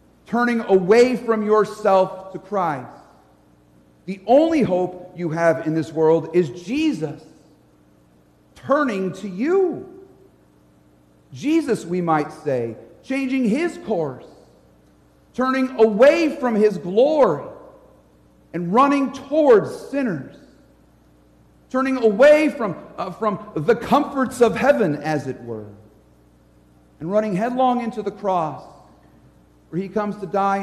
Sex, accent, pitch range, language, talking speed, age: male, American, 145-220 Hz, English, 115 wpm, 50-69